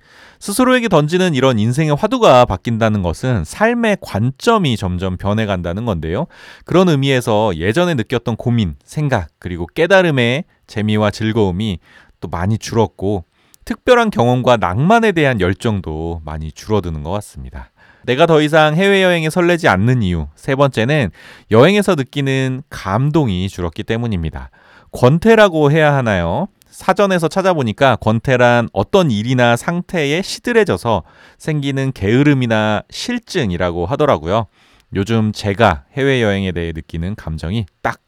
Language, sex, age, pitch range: Korean, male, 30-49, 95-155 Hz